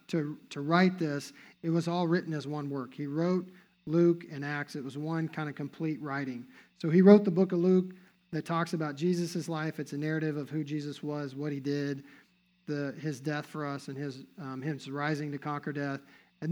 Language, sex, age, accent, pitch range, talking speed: English, male, 50-69, American, 150-180 Hz, 215 wpm